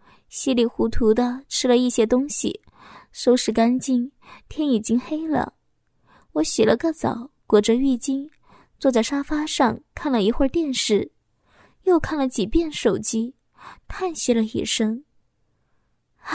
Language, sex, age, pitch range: Chinese, female, 20-39, 235-290 Hz